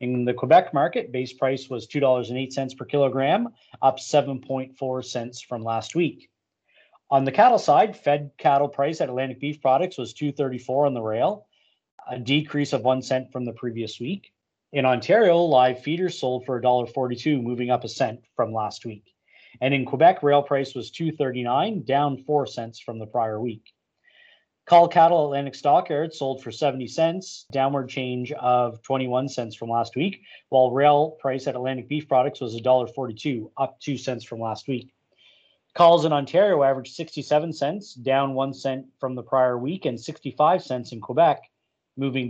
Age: 30-49